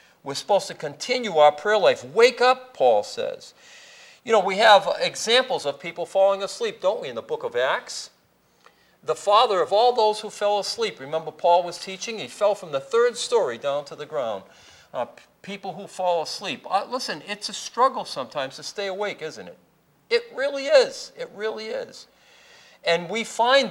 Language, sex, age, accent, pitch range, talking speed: English, male, 50-69, American, 140-225 Hz, 185 wpm